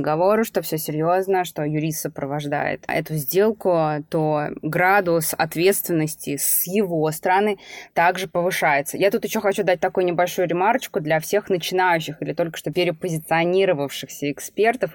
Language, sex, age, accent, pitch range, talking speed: Russian, female, 20-39, native, 155-185 Hz, 130 wpm